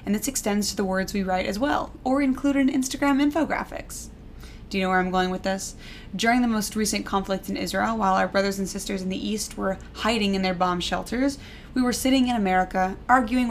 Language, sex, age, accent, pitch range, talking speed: English, female, 20-39, American, 190-225 Hz, 220 wpm